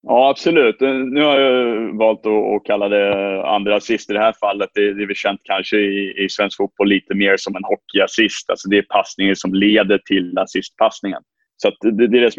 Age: 20-39